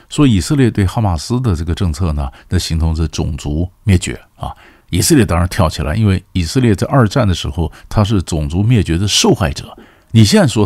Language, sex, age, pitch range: Chinese, male, 50-69, 85-110 Hz